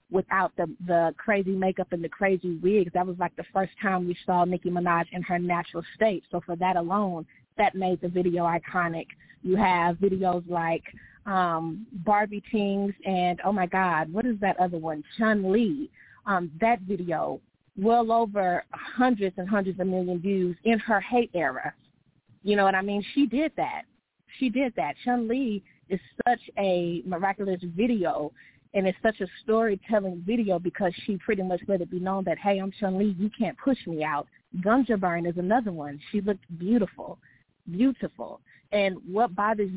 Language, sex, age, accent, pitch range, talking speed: English, female, 20-39, American, 175-210 Hz, 180 wpm